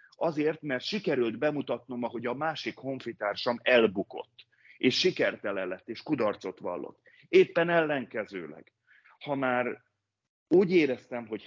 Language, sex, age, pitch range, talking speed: Hungarian, male, 30-49, 105-140 Hz, 115 wpm